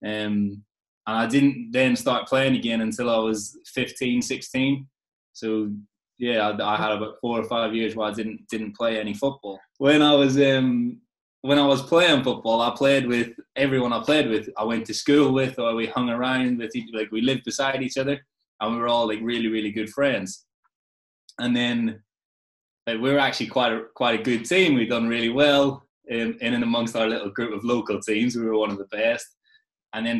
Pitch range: 105-125 Hz